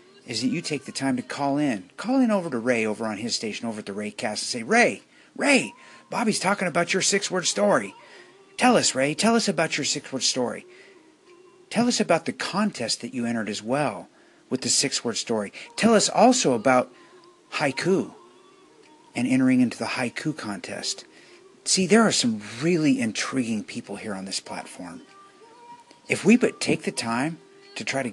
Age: 50-69